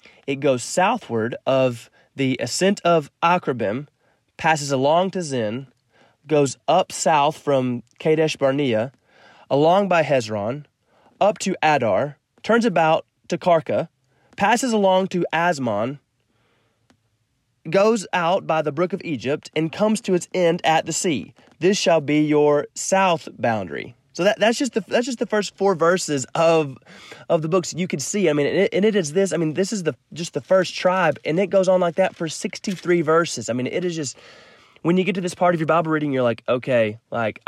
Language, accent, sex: English, American, male